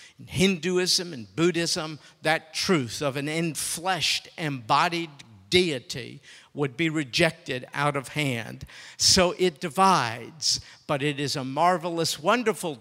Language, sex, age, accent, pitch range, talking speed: English, male, 50-69, American, 145-185 Hz, 120 wpm